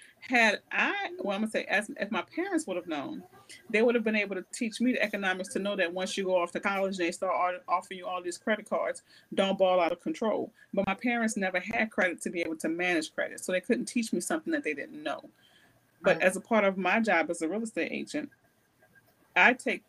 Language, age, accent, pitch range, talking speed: English, 30-49, American, 185-245 Hz, 245 wpm